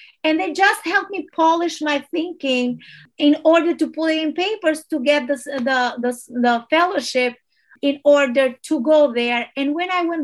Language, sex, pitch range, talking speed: English, female, 255-330 Hz, 175 wpm